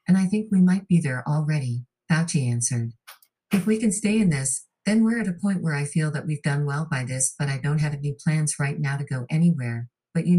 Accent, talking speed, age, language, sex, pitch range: American, 250 wpm, 50-69, English, female, 130-165 Hz